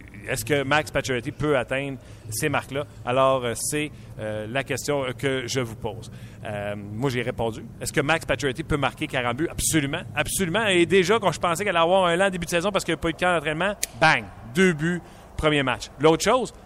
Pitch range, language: 125-170 Hz, French